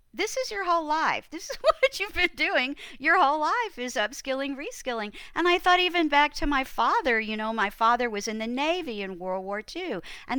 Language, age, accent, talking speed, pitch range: English, 50-69, American, 220 wpm, 215-285 Hz